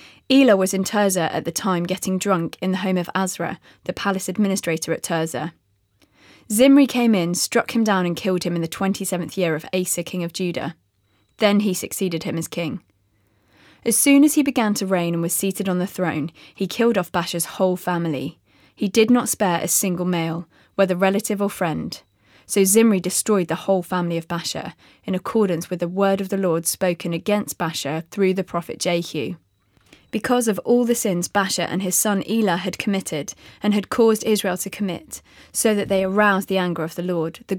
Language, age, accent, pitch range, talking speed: English, 20-39, British, 170-205 Hz, 200 wpm